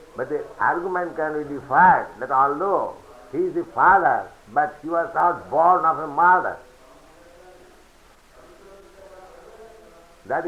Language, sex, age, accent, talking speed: English, male, 60-79, Indian, 120 wpm